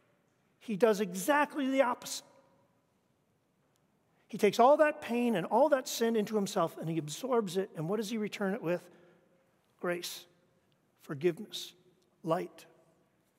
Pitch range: 165-240 Hz